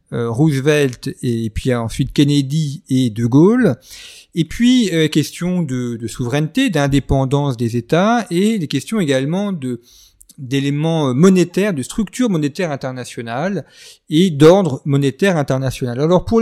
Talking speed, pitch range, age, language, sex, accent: 130 wpm, 125-175 Hz, 40-59, French, male, French